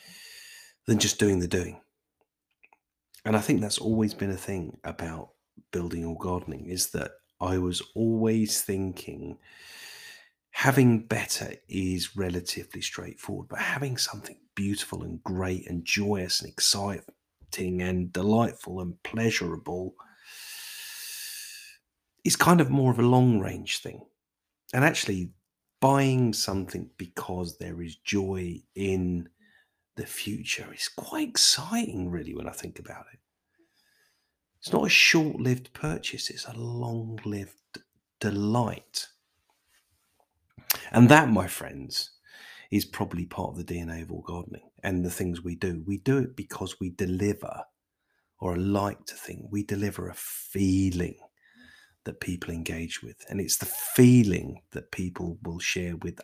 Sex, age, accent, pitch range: male, 40-59, British, 90-125 Hz